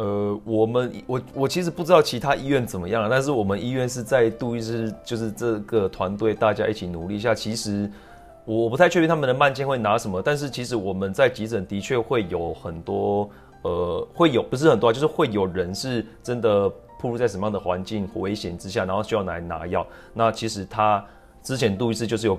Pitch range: 95-120 Hz